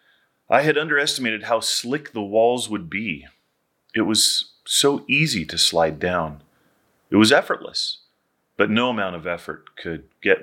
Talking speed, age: 150 wpm, 30-49